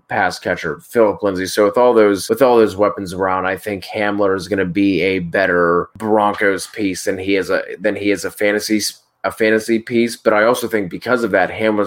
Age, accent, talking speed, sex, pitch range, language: 20-39, American, 225 wpm, male, 95-110 Hz, English